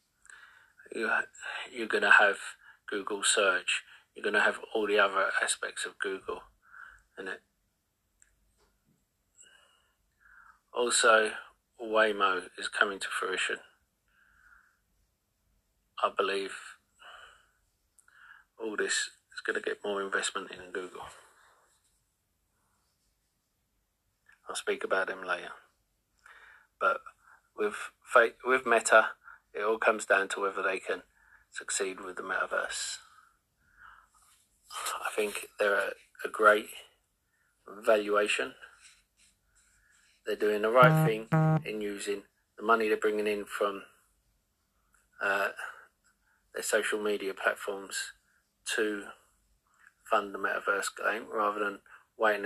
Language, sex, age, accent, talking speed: English, male, 40-59, British, 105 wpm